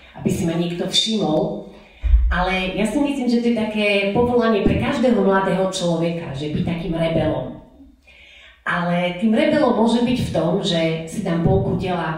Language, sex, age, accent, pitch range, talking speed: Czech, female, 30-49, native, 170-210 Hz, 170 wpm